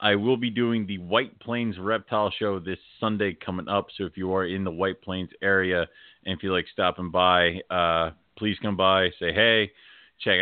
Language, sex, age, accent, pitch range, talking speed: English, male, 30-49, American, 90-110 Hz, 195 wpm